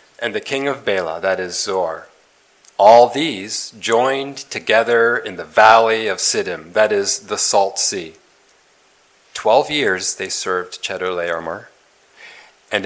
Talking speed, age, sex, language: 130 wpm, 40-59, male, English